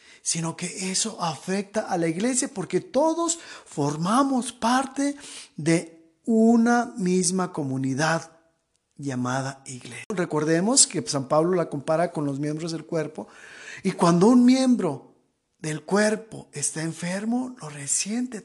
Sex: male